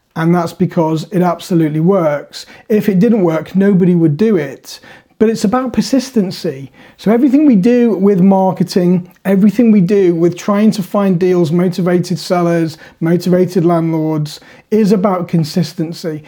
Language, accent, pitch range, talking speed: English, British, 170-215 Hz, 145 wpm